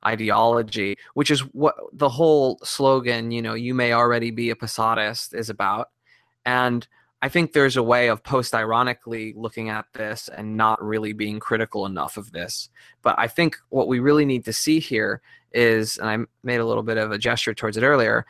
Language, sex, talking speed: English, male, 195 wpm